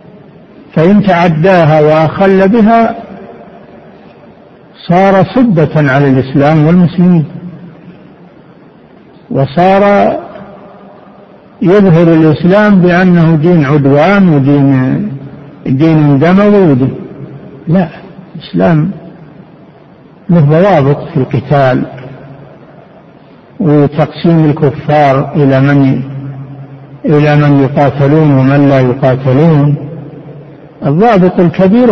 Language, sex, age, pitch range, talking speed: Arabic, male, 60-79, 145-185 Hz, 70 wpm